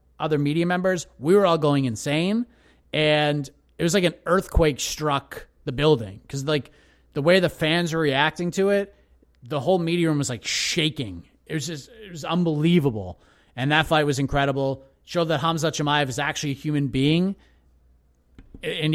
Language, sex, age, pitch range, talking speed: English, male, 30-49, 135-170 Hz, 175 wpm